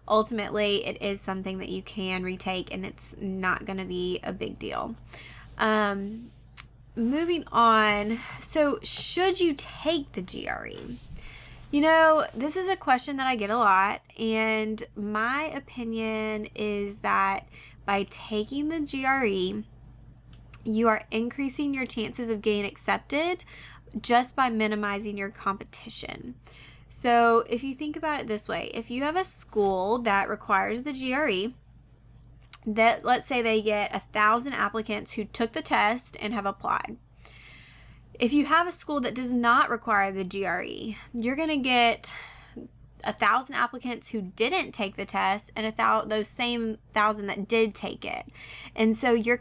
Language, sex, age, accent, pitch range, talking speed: English, female, 20-39, American, 200-250 Hz, 150 wpm